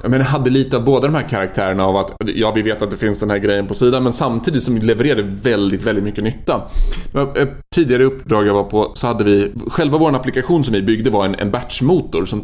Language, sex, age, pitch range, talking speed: Swedish, male, 20-39, 105-130 Hz, 230 wpm